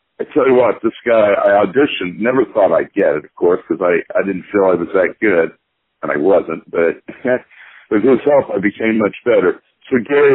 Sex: male